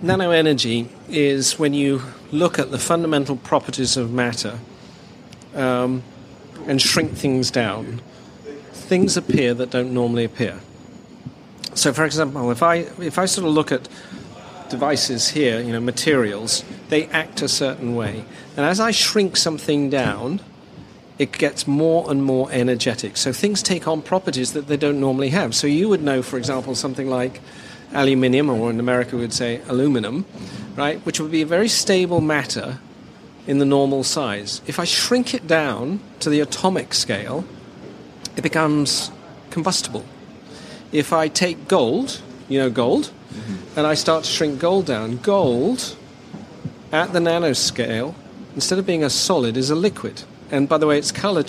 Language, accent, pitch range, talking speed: English, British, 125-165 Hz, 160 wpm